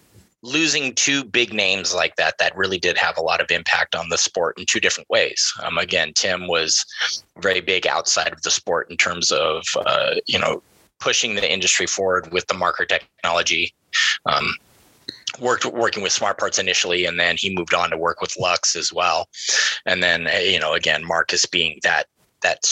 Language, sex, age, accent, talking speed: English, male, 20-39, American, 190 wpm